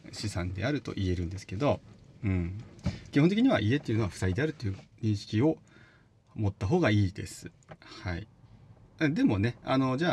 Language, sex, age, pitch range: Japanese, male, 30-49, 95-140 Hz